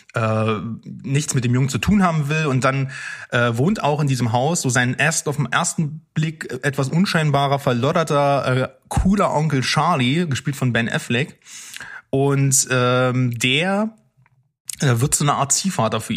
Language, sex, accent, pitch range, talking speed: German, male, German, 125-150 Hz, 165 wpm